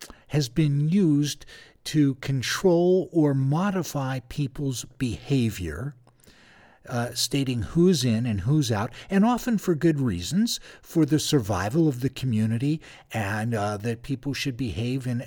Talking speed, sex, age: 135 wpm, male, 50-69